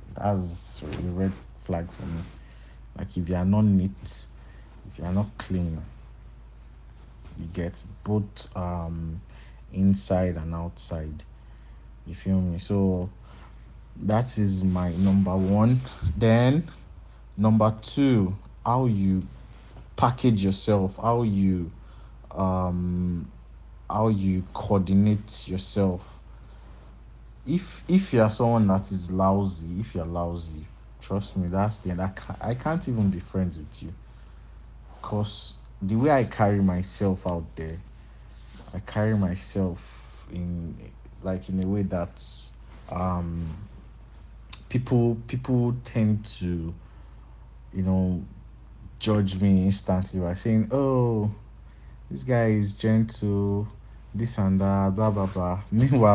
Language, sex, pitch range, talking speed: English, male, 90-105 Hz, 120 wpm